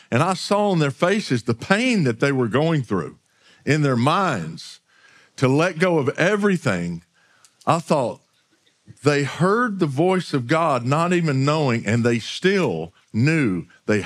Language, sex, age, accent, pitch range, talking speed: English, male, 50-69, American, 125-175 Hz, 160 wpm